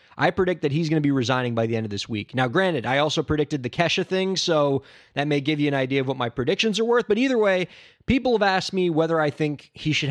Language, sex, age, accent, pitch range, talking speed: English, male, 20-39, American, 120-160 Hz, 280 wpm